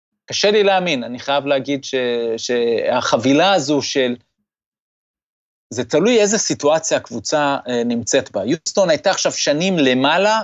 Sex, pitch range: male, 130-165 Hz